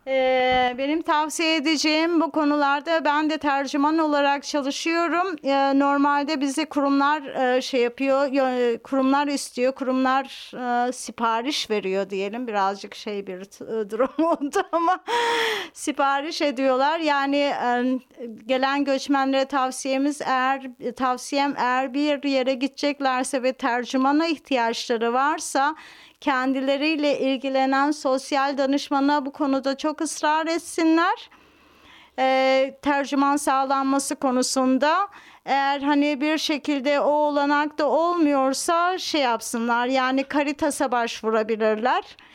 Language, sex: German, female